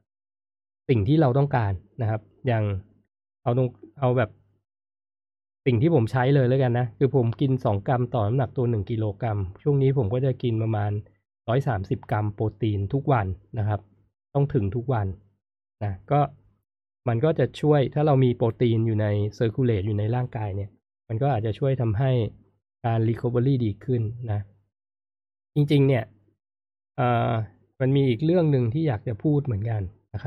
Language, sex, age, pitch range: Thai, male, 20-39, 105-135 Hz